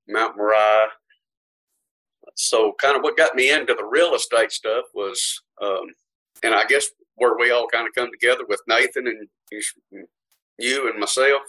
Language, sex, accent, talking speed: English, male, American, 160 wpm